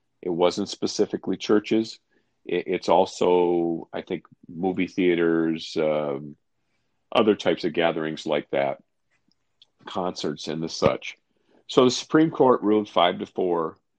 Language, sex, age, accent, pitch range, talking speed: English, male, 50-69, American, 80-95 Hz, 130 wpm